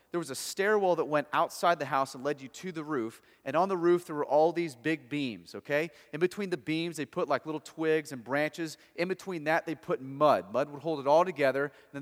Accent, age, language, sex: American, 30-49, English, male